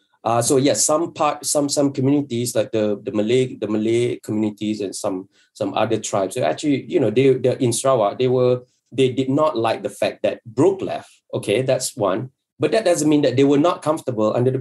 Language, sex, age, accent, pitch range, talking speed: English, male, 20-39, Malaysian, 115-165 Hz, 220 wpm